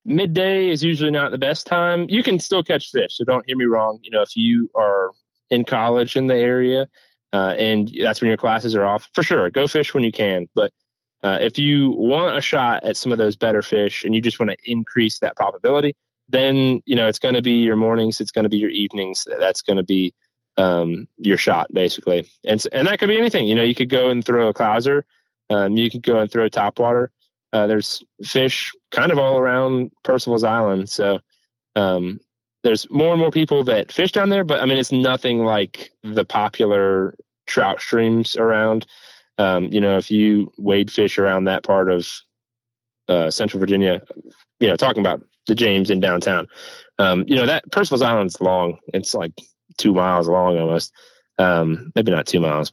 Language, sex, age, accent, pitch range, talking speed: English, male, 20-39, American, 100-130 Hz, 205 wpm